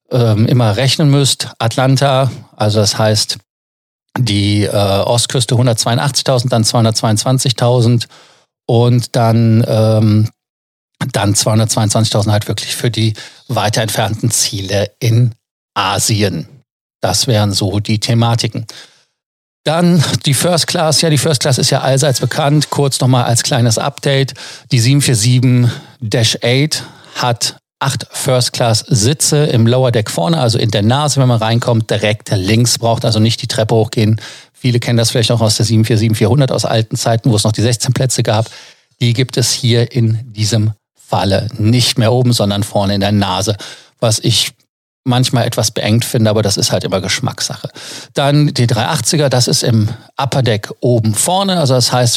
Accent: German